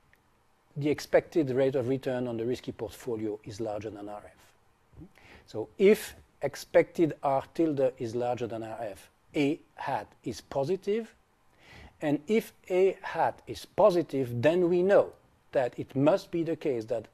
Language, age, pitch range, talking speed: English, 40-59, 110-145 Hz, 145 wpm